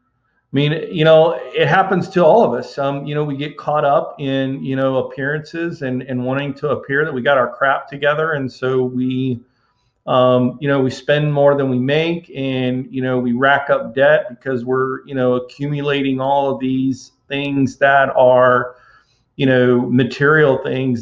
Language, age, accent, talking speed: English, 40-59, American, 190 wpm